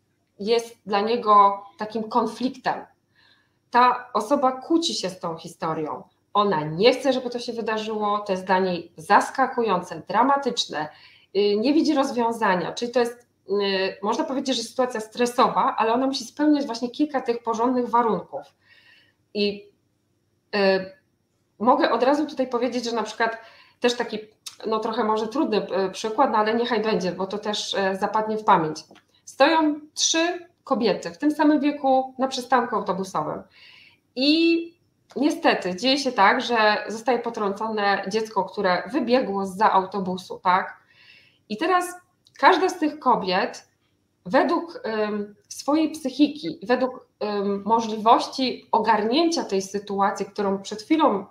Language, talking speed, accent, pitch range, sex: Polish, 135 wpm, native, 200-265 Hz, female